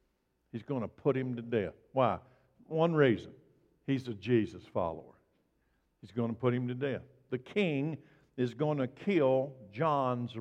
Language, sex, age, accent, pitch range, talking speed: English, male, 60-79, American, 125-160 Hz, 160 wpm